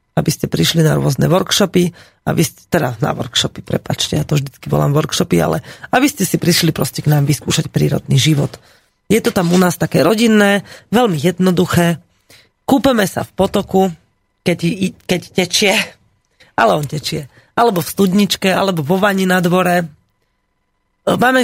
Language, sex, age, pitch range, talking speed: Slovak, female, 30-49, 150-190 Hz, 155 wpm